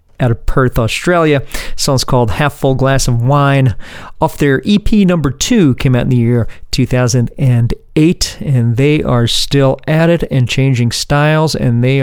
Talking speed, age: 170 wpm, 40-59